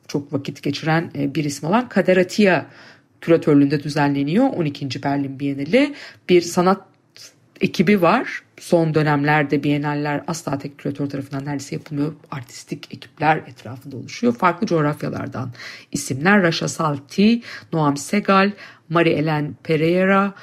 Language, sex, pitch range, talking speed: Turkish, female, 145-205 Hz, 115 wpm